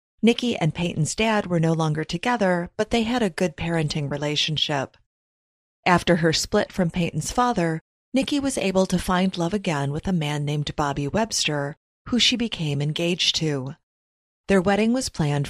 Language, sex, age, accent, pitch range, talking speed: English, female, 30-49, American, 155-210 Hz, 165 wpm